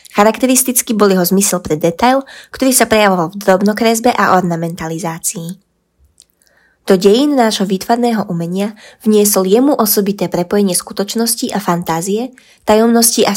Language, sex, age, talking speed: Slovak, female, 20-39, 120 wpm